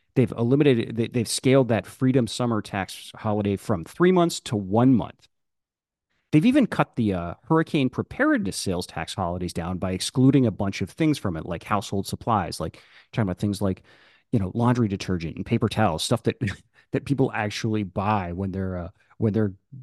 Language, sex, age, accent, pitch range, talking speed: English, male, 30-49, American, 100-125 Hz, 180 wpm